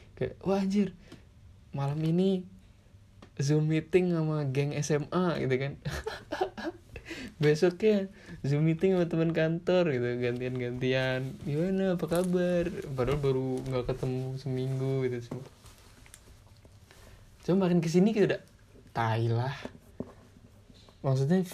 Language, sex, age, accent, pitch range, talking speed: Indonesian, male, 20-39, native, 110-135 Hz, 105 wpm